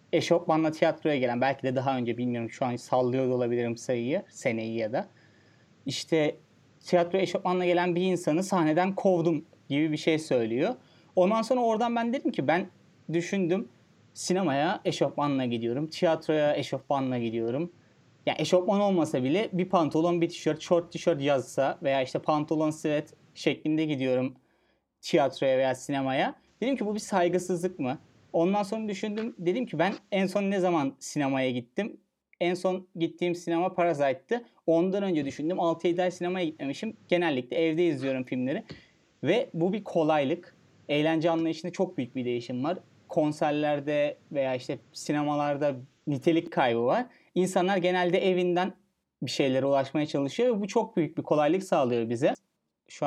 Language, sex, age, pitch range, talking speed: Turkish, male, 30-49, 140-180 Hz, 145 wpm